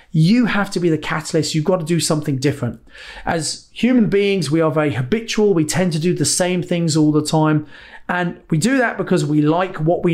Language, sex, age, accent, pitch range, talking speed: English, male, 30-49, British, 155-195 Hz, 225 wpm